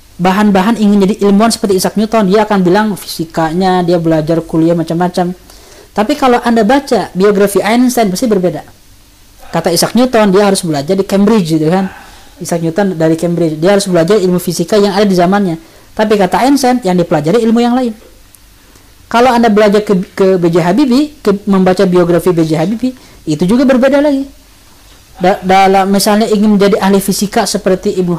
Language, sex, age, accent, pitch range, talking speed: Indonesian, female, 20-39, native, 170-225 Hz, 170 wpm